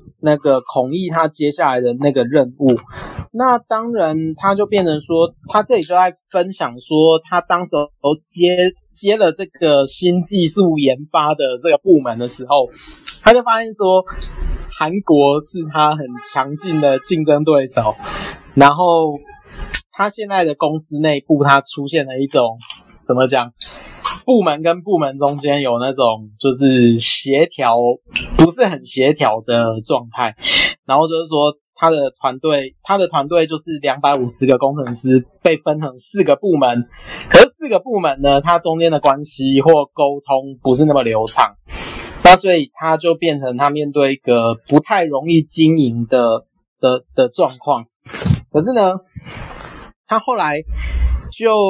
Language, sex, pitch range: Chinese, male, 135-175 Hz